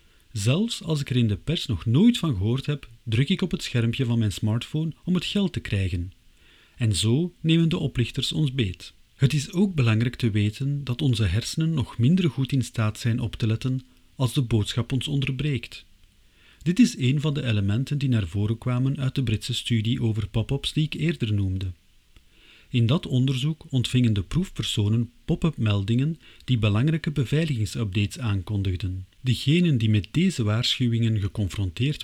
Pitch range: 105-140 Hz